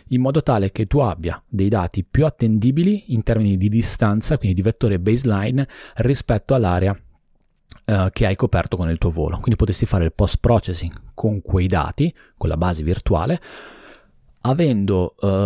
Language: Italian